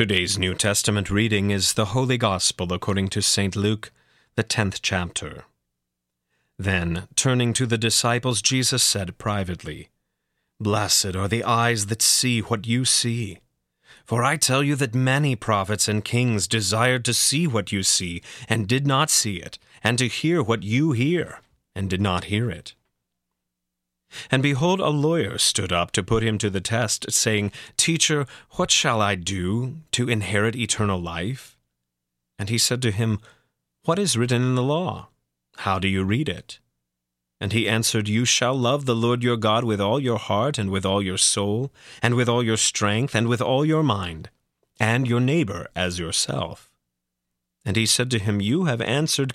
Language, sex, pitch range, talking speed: English, male, 95-125 Hz, 175 wpm